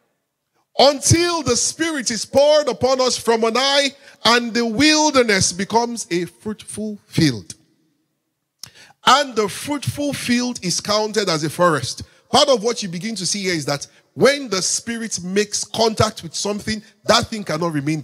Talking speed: 155 wpm